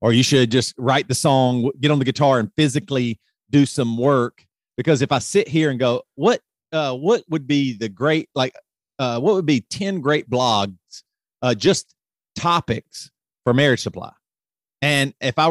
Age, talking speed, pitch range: 40-59, 180 wpm, 120-150 Hz